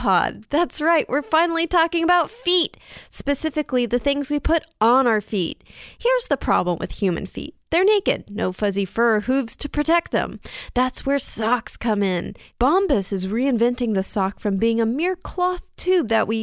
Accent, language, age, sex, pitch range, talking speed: American, English, 30-49, female, 225-320 Hz, 180 wpm